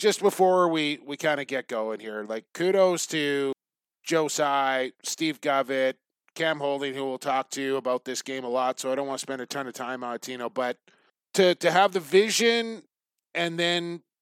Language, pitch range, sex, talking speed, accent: English, 135-170 Hz, male, 205 wpm, American